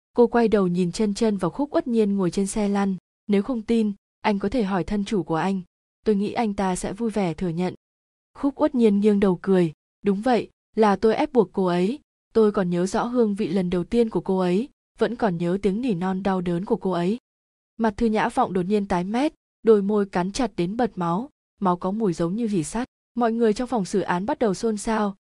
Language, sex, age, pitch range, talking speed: Vietnamese, female, 20-39, 185-230 Hz, 245 wpm